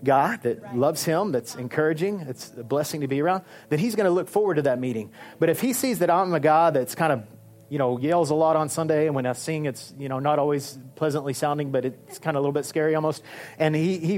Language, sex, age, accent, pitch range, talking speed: English, male, 30-49, American, 145-190 Hz, 260 wpm